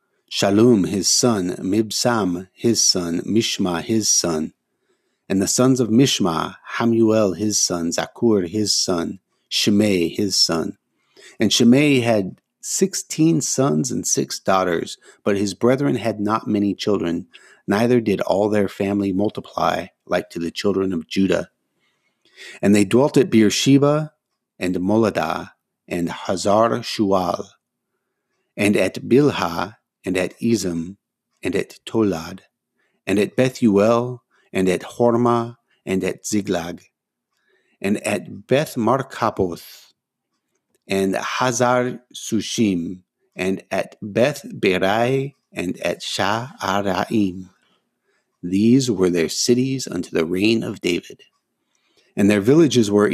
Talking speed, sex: 120 wpm, male